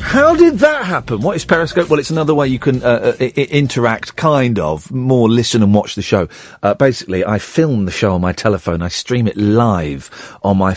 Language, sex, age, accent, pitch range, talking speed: English, male, 40-59, British, 105-160 Hz, 210 wpm